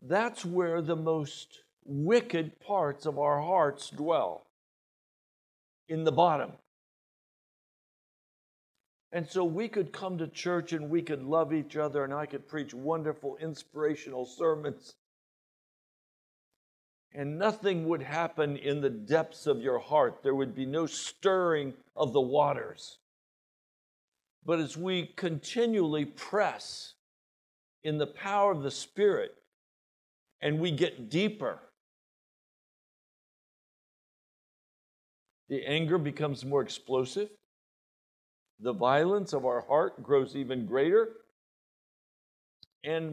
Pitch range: 145-180 Hz